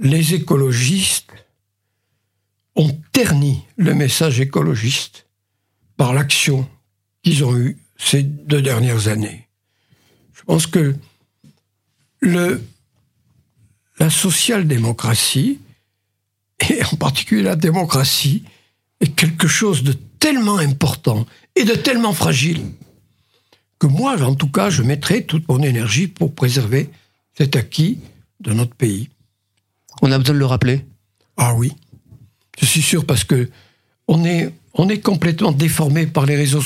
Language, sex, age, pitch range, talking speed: French, male, 60-79, 120-175 Hz, 125 wpm